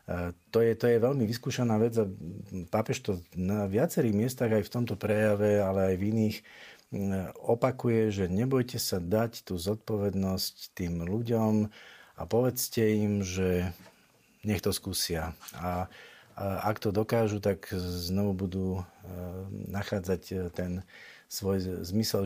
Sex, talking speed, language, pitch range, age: male, 130 wpm, Slovak, 95-110 Hz, 50-69